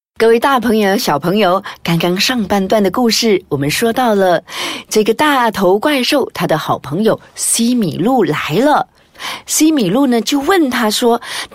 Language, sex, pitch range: Chinese, female, 215-335 Hz